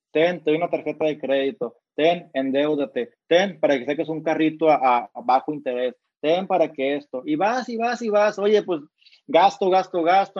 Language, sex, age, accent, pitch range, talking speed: Spanish, male, 30-49, Mexican, 140-170 Hz, 195 wpm